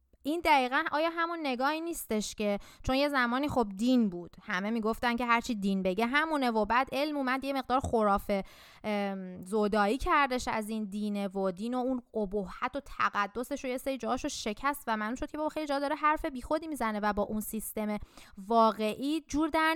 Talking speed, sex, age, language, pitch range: 190 wpm, female, 20-39, Persian, 210-275 Hz